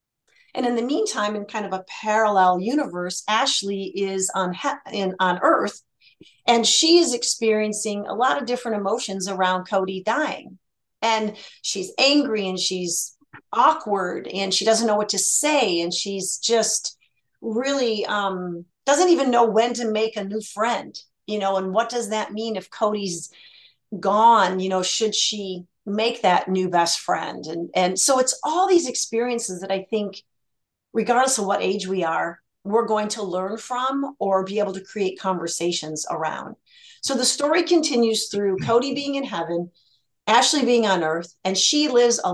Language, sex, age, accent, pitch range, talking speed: English, female, 40-59, American, 190-240 Hz, 170 wpm